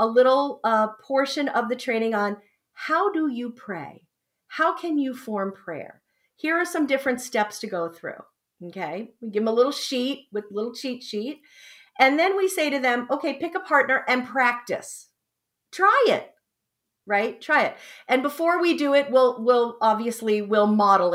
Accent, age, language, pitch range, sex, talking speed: American, 40-59, English, 210-300 Hz, female, 180 wpm